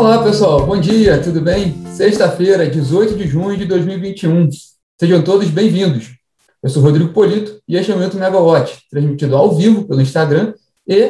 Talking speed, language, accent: 160 wpm, Portuguese, Brazilian